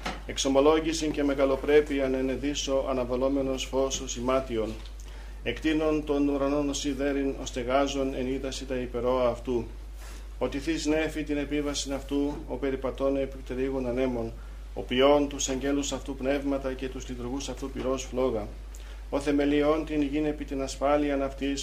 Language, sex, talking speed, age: Greek, male, 130 wpm, 40-59